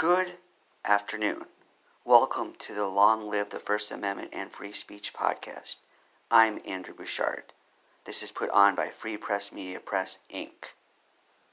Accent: American